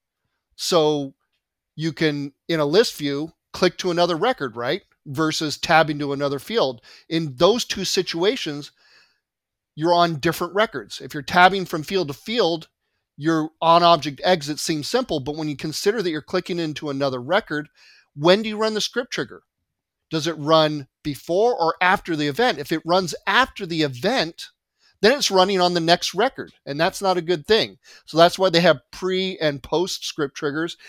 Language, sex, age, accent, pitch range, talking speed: English, male, 40-59, American, 145-180 Hz, 175 wpm